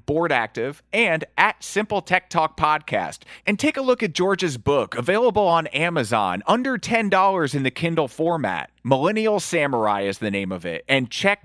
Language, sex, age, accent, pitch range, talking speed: English, male, 30-49, American, 130-185 Hz, 175 wpm